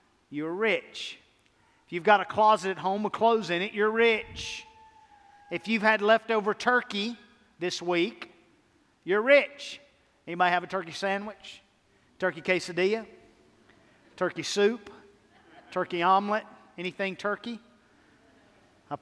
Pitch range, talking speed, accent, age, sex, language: 180-245 Hz, 120 wpm, American, 40-59, male, English